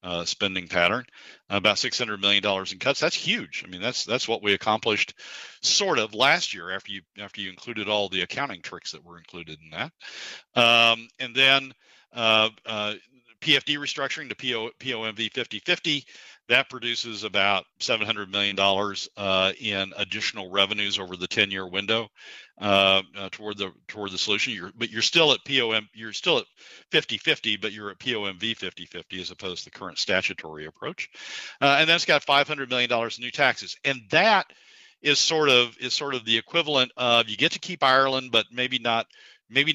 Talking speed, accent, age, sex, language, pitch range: 185 wpm, American, 50-69, male, English, 95-130 Hz